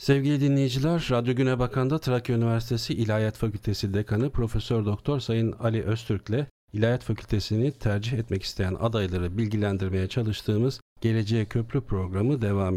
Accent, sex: native, male